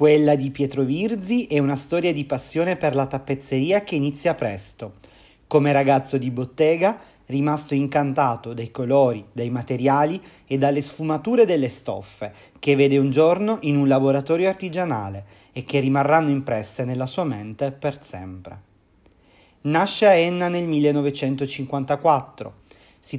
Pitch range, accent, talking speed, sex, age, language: 125-160 Hz, native, 135 wpm, male, 30-49, Italian